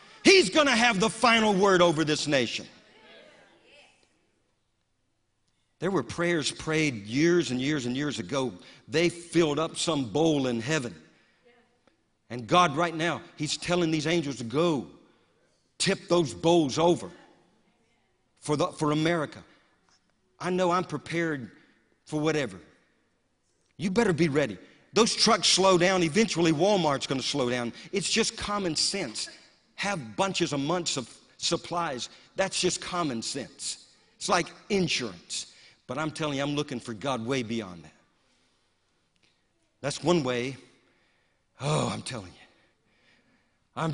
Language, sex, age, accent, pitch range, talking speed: English, male, 50-69, American, 125-175 Hz, 140 wpm